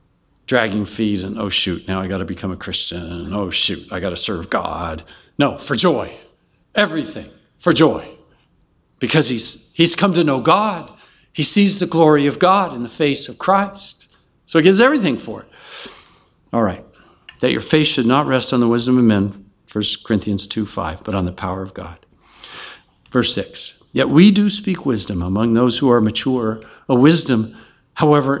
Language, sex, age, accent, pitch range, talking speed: English, male, 60-79, American, 105-165 Hz, 180 wpm